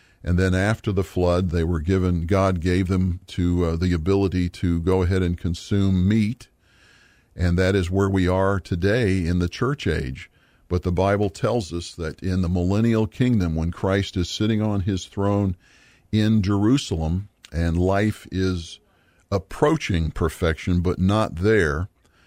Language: English